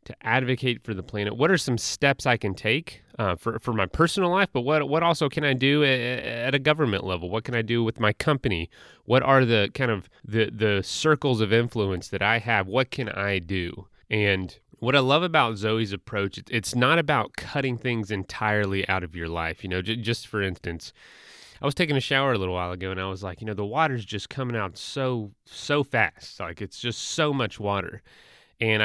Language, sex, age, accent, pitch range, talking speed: English, male, 30-49, American, 100-140 Hz, 225 wpm